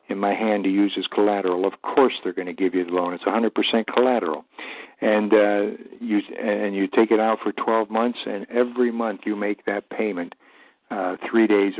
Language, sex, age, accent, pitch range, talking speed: English, male, 60-79, American, 105-120 Hz, 205 wpm